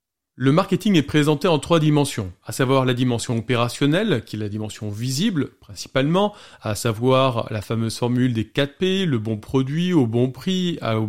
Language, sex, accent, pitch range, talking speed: French, male, French, 125-165 Hz, 180 wpm